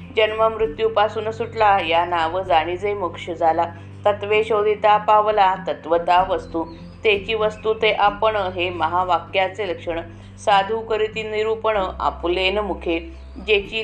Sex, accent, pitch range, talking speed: female, native, 170-215 Hz, 75 wpm